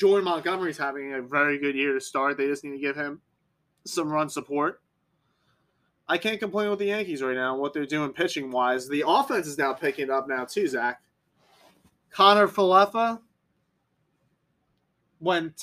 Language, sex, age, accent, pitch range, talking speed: English, male, 20-39, American, 145-175 Hz, 165 wpm